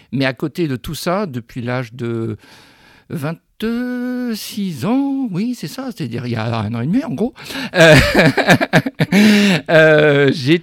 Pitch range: 120-160 Hz